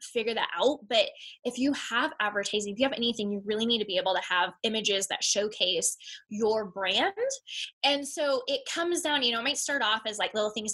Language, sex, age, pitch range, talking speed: English, female, 10-29, 210-275 Hz, 225 wpm